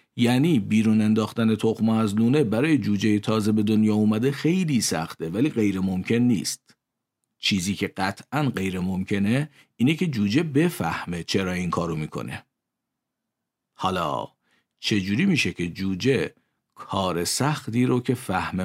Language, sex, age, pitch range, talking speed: Persian, male, 50-69, 95-130 Hz, 130 wpm